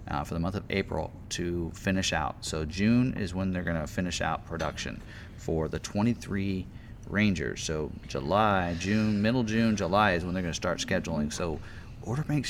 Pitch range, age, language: 85-110 Hz, 30-49, English